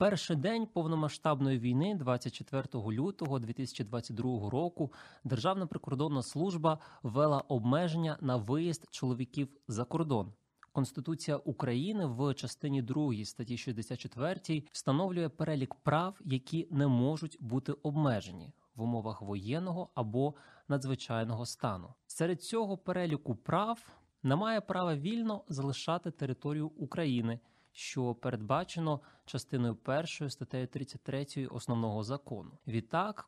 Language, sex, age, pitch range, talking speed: Ukrainian, male, 20-39, 125-160 Hz, 105 wpm